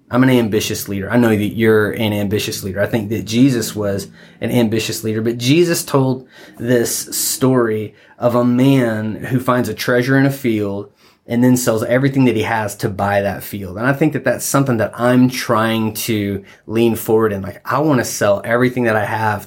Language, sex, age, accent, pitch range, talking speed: English, male, 20-39, American, 105-125 Hz, 205 wpm